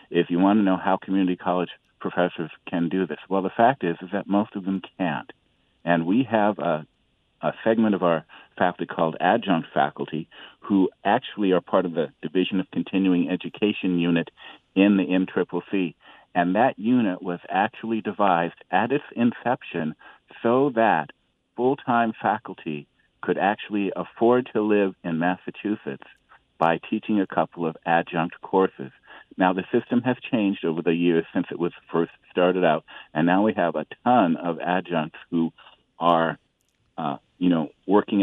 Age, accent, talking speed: 50-69, American, 160 wpm